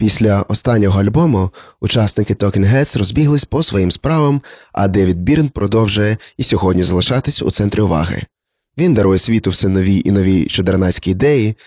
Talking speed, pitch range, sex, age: 145 wpm, 100-120 Hz, male, 20-39